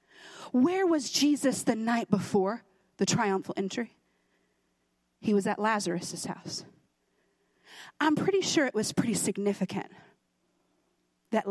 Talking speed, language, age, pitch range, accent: 115 wpm, English, 40-59, 215-335 Hz, American